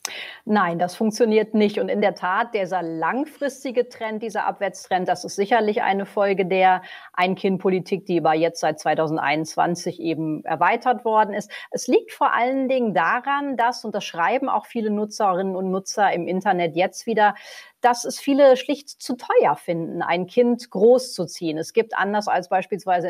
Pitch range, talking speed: 180-235 Hz, 160 wpm